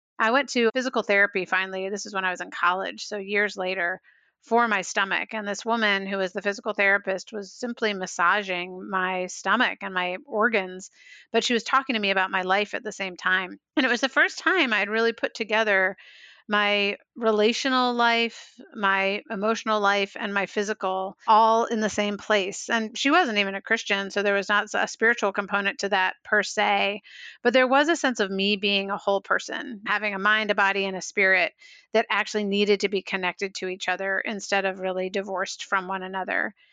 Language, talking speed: English, 205 wpm